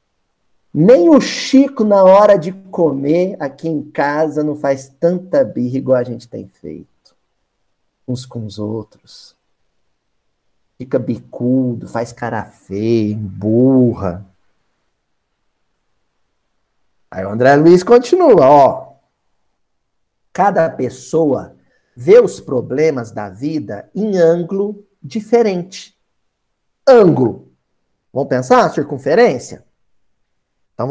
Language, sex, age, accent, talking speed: Portuguese, male, 50-69, Brazilian, 100 wpm